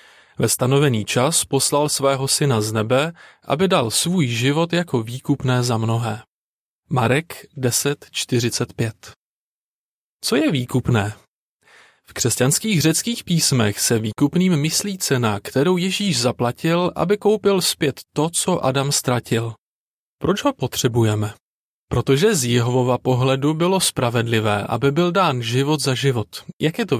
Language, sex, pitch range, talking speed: Czech, male, 120-160 Hz, 125 wpm